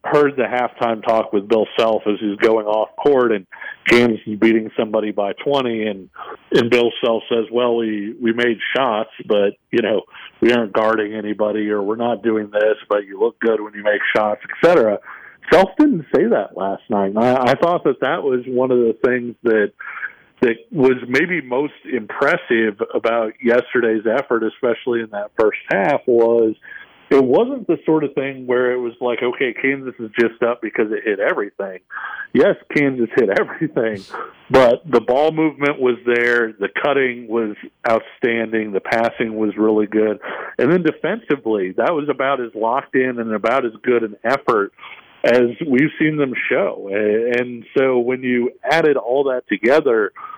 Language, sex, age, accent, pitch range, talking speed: English, male, 50-69, American, 110-130 Hz, 175 wpm